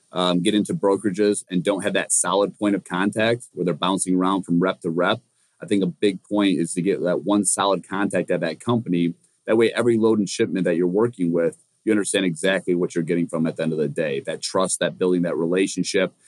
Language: English